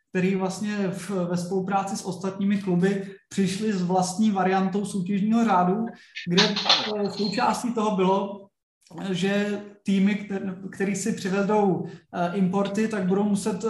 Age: 20-39